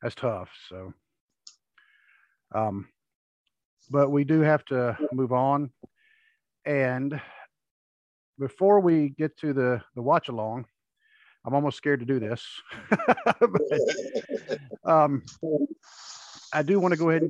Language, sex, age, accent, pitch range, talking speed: English, male, 50-69, American, 120-145 Hz, 120 wpm